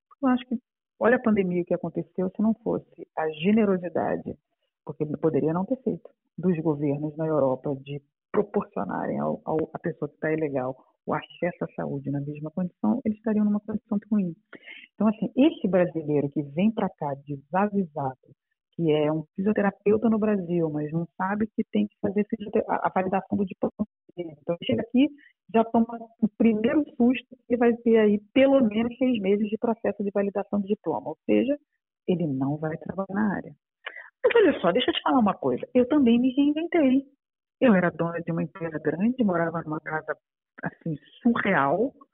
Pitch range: 165-240 Hz